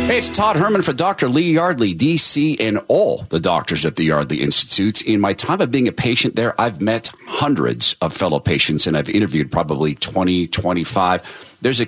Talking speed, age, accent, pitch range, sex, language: 195 wpm, 50-69, American, 90-125 Hz, male, English